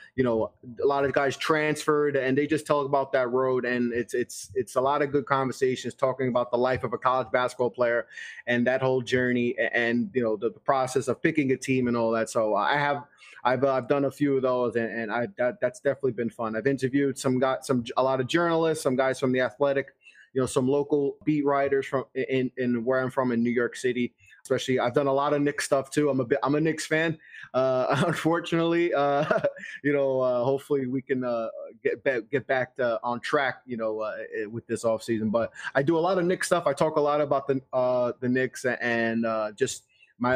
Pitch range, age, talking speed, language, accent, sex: 120-140 Hz, 20-39, 235 wpm, English, American, male